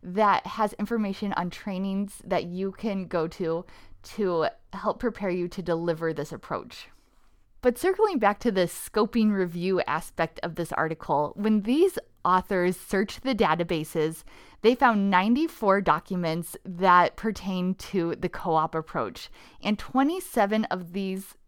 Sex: female